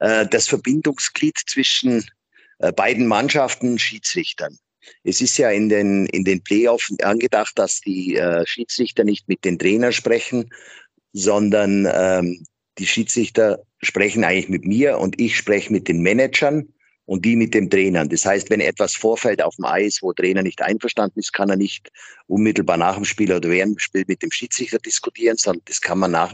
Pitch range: 95-115 Hz